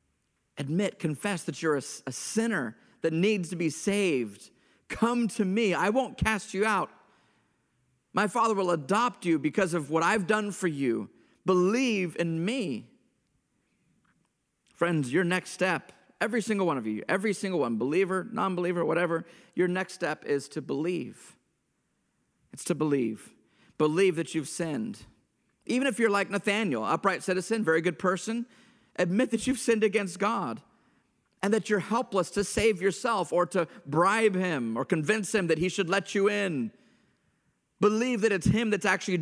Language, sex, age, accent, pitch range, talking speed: English, male, 40-59, American, 155-210 Hz, 160 wpm